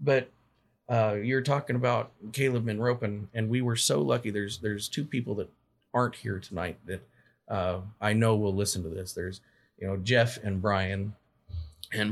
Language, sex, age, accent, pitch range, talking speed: English, male, 40-59, American, 95-115 Hz, 175 wpm